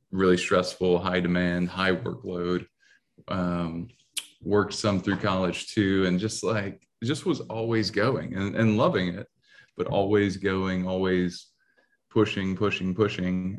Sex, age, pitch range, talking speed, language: male, 20-39, 90-105 Hz, 135 wpm, English